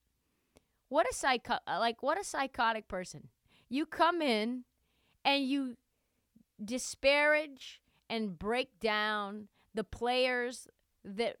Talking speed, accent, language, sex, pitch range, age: 105 wpm, American, English, female, 200-265 Hz, 30-49